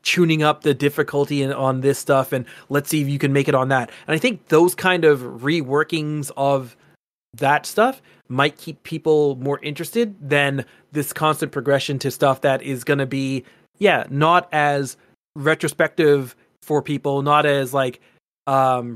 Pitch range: 135-175 Hz